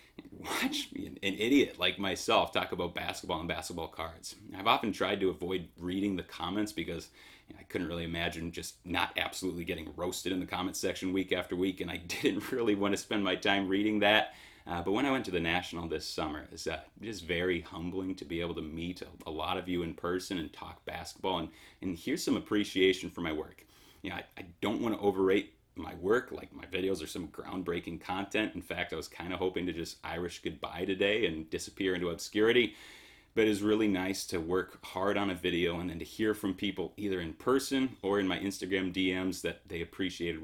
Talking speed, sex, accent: 220 wpm, male, American